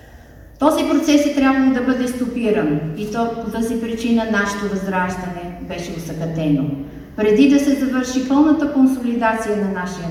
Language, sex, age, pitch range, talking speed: Bulgarian, female, 50-69, 170-255 Hz, 140 wpm